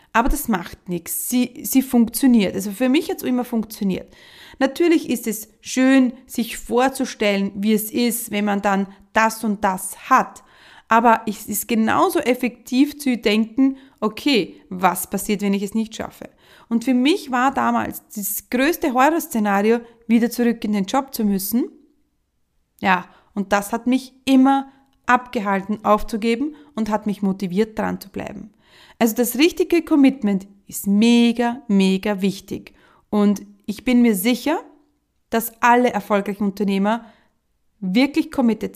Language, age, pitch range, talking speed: German, 30-49, 205-255 Hz, 145 wpm